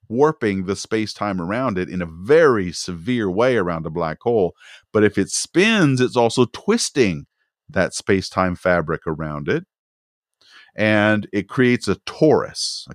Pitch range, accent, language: 85-130 Hz, American, English